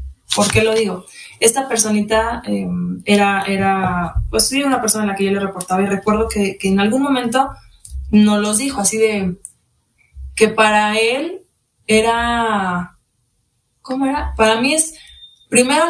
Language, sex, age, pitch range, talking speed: Spanish, female, 20-39, 190-235 Hz, 155 wpm